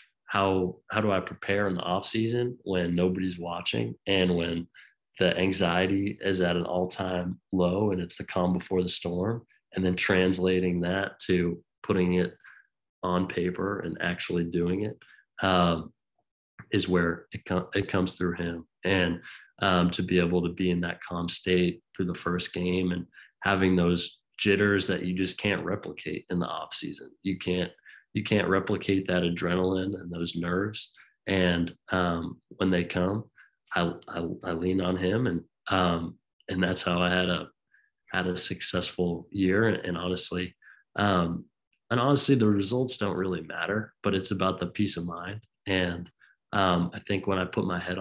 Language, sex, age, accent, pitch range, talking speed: English, male, 30-49, American, 90-95 Hz, 170 wpm